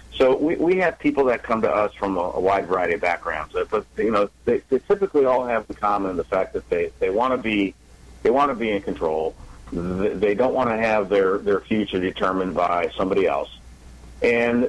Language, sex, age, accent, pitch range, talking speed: English, male, 50-69, American, 85-125 Hz, 220 wpm